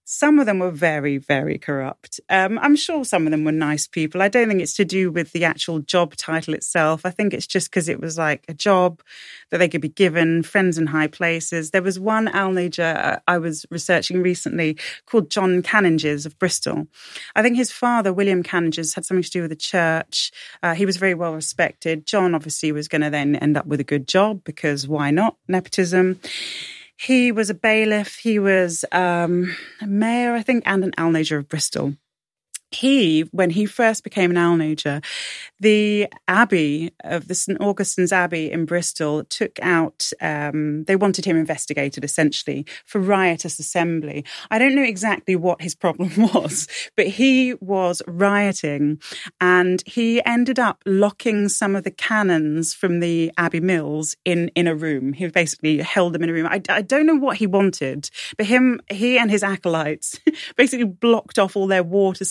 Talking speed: 185 wpm